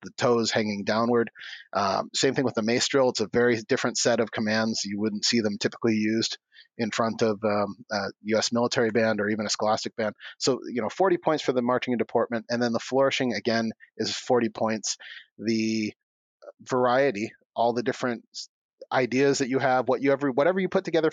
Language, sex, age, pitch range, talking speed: English, male, 30-49, 110-140 Hz, 200 wpm